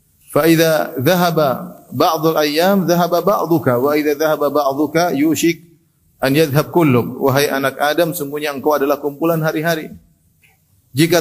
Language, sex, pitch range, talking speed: Indonesian, male, 135-180 Hz, 110 wpm